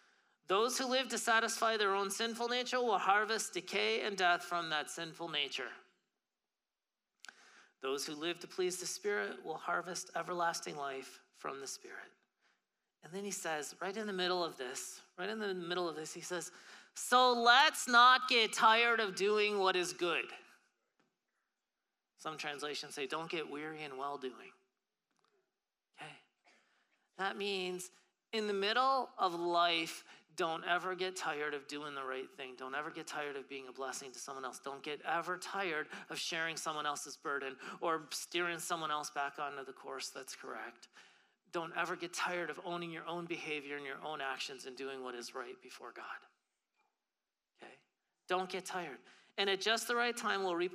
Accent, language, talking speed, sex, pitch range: American, English, 175 wpm, male, 150-210 Hz